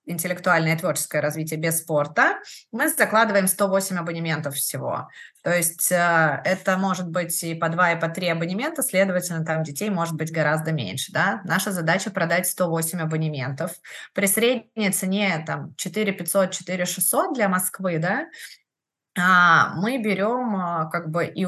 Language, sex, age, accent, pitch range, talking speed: Russian, female, 20-39, native, 170-205 Hz, 145 wpm